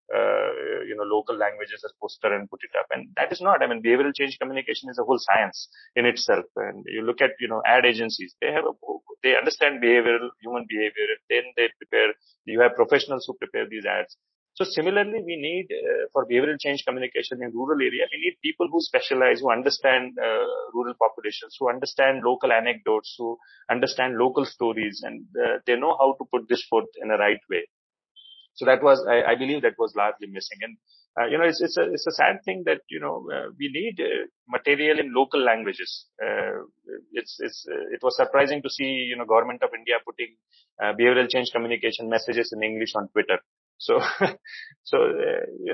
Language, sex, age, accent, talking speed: English, male, 30-49, Indian, 205 wpm